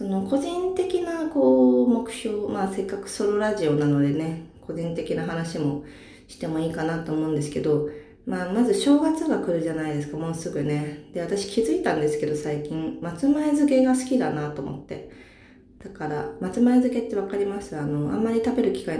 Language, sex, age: Japanese, female, 20-39